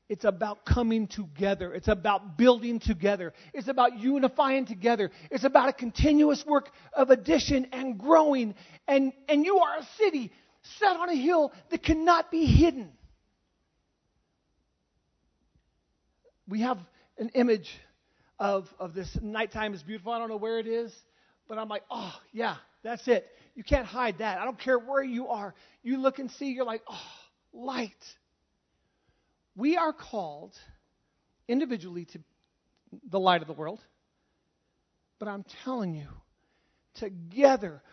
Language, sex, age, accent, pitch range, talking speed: English, male, 40-59, American, 200-270 Hz, 145 wpm